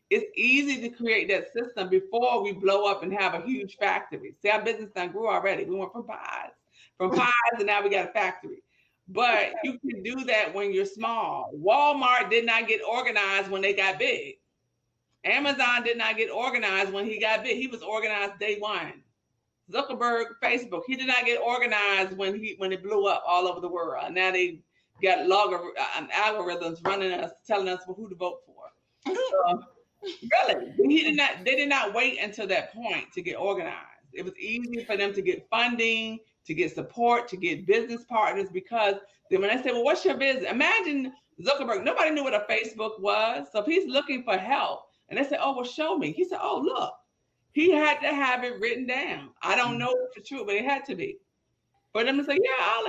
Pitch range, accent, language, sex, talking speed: 200-280 Hz, American, English, female, 210 wpm